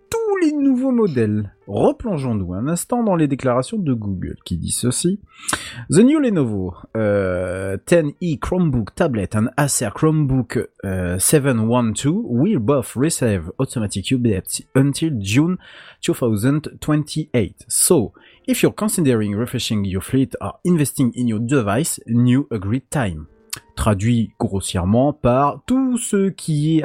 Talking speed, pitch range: 125 wpm, 105-150 Hz